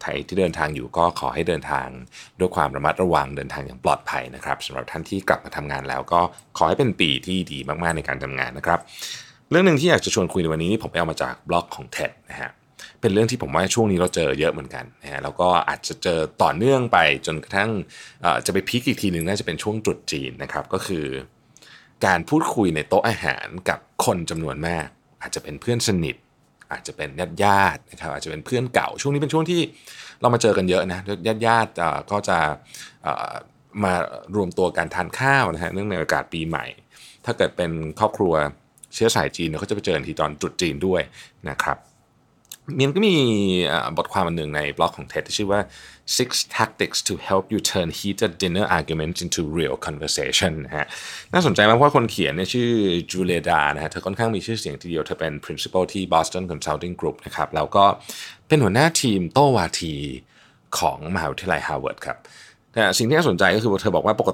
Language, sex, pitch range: Thai, male, 80-110 Hz